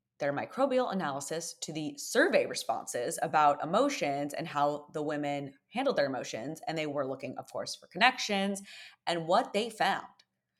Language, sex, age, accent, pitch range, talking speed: English, female, 20-39, American, 145-205 Hz, 160 wpm